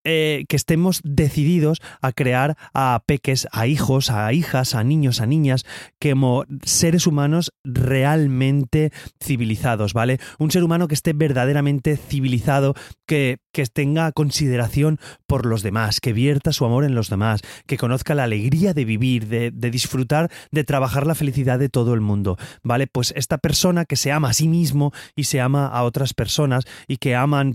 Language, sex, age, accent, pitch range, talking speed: Spanish, male, 30-49, Spanish, 120-150 Hz, 175 wpm